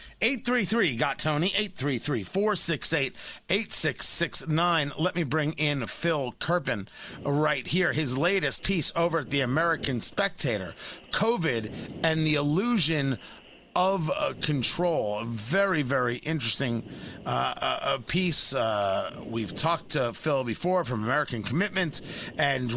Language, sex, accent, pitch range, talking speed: English, male, American, 145-195 Hz, 115 wpm